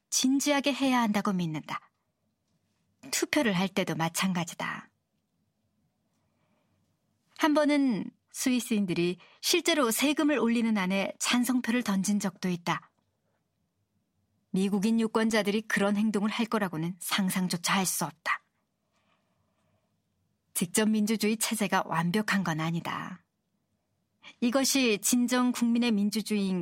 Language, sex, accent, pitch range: Korean, male, native, 185-255 Hz